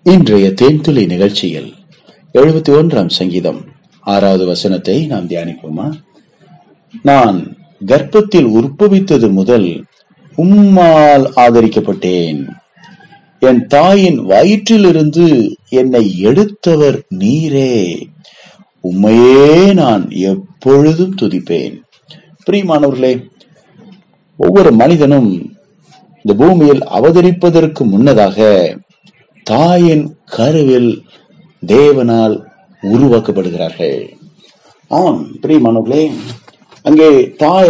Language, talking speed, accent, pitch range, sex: Tamil, 55 wpm, native, 115-180 Hz, male